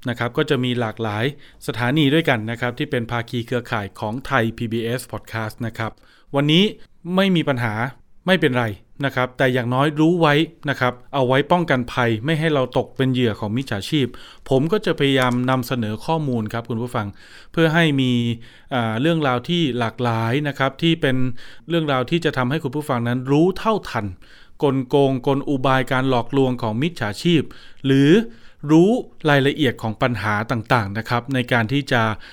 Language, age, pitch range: Thai, 20-39, 120-155 Hz